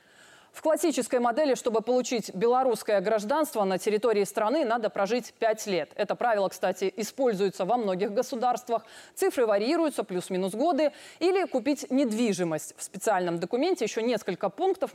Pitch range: 200-280 Hz